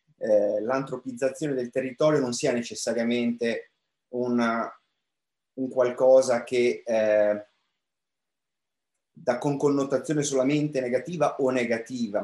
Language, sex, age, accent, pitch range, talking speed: Italian, male, 30-49, native, 115-140 Hz, 95 wpm